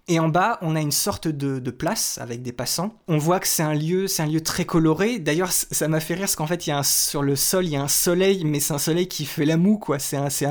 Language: French